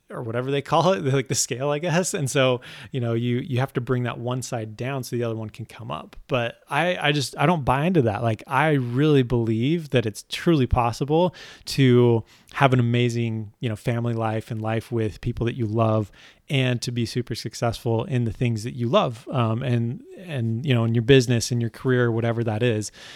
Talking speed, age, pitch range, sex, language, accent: 225 wpm, 20-39, 115-135 Hz, male, English, American